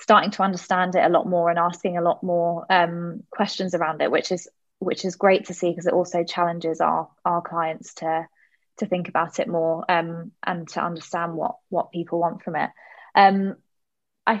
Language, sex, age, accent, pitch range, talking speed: English, female, 20-39, British, 170-190 Hz, 200 wpm